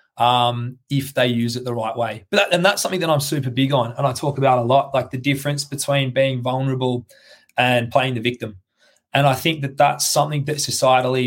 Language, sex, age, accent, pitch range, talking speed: English, male, 20-39, Australian, 125-145 Hz, 220 wpm